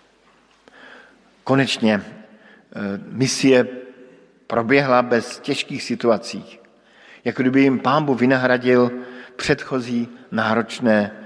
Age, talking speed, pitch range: 50-69, 75 wpm, 120-140 Hz